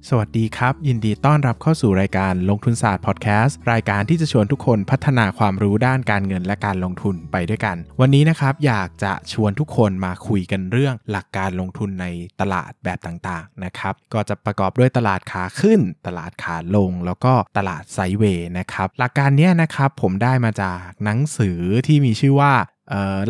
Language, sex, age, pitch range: Thai, male, 20-39, 95-130 Hz